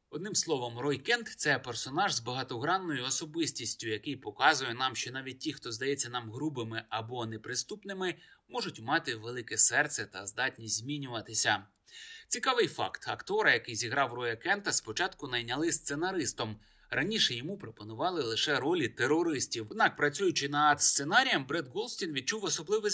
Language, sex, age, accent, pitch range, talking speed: Ukrainian, male, 30-49, native, 130-210 Hz, 140 wpm